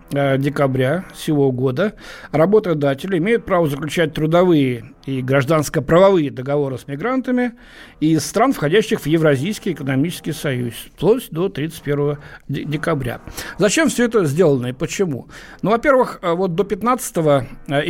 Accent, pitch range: native, 140-185 Hz